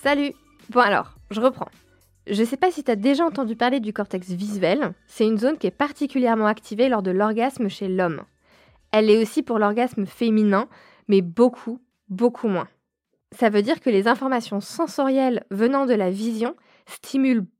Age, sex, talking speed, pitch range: 20-39, female, 175 wpm, 205-270 Hz